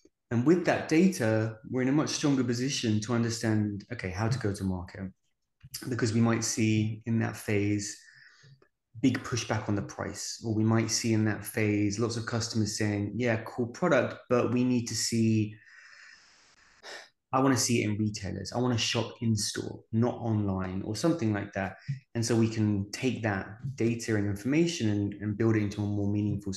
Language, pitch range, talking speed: English, 105-125 Hz, 185 wpm